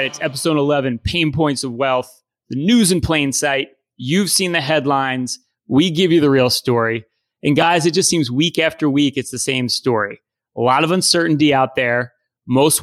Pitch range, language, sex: 130-165 Hz, English, male